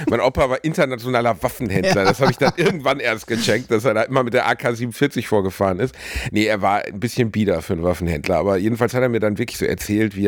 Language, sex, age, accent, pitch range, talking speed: German, male, 50-69, German, 95-125 Hz, 235 wpm